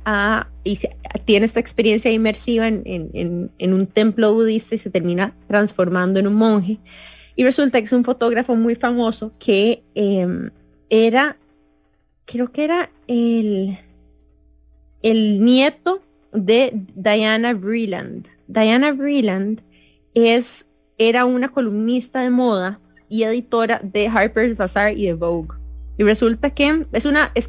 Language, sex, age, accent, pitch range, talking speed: English, female, 20-39, Colombian, 175-240 Hz, 135 wpm